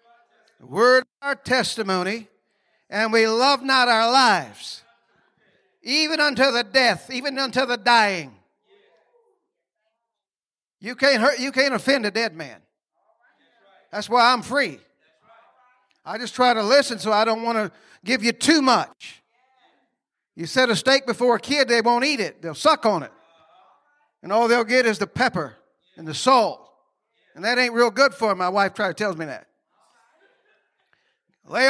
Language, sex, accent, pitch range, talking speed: English, male, American, 220-270 Hz, 155 wpm